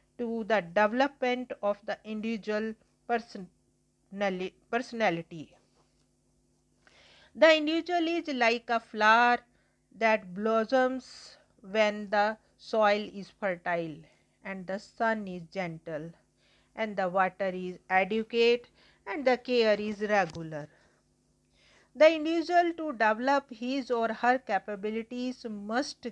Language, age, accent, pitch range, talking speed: English, 50-69, Indian, 200-245 Hz, 100 wpm